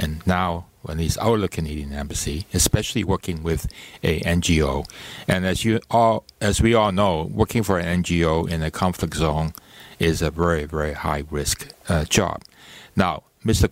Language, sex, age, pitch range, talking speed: English, male, 60-79, 80-100 Hz, 175 wpm